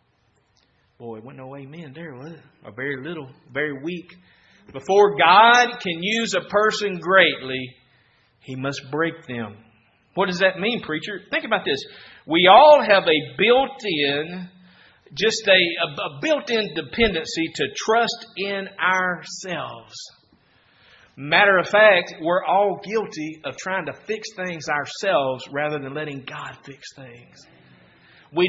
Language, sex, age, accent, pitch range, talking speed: English, male, 40-59, American, 130-180 Hz, 135 wpm